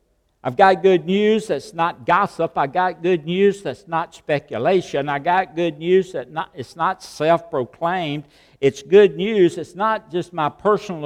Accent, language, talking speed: American, English, 170 wpm